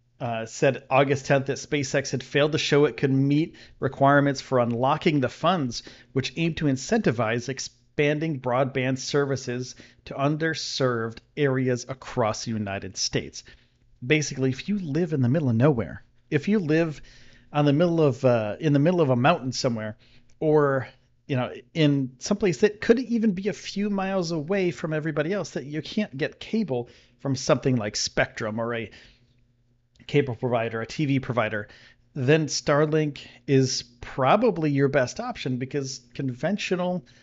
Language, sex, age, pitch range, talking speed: English, male, 40-59, 120-155 Hz, 160 wpm